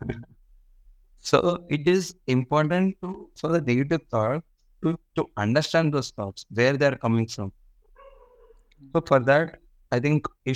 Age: 50-69